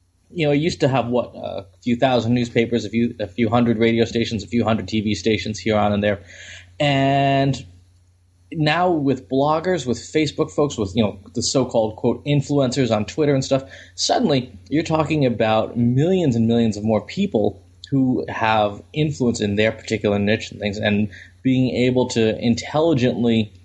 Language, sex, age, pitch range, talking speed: English, male, 20-39, 105-130 Hz, 175 wpm